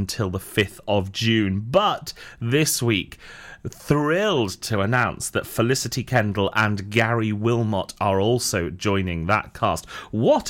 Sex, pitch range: male, 100-130 Hz